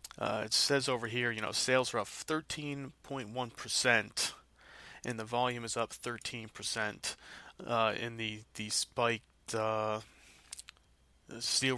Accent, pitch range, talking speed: American, 110-120 Hz, 120 wpm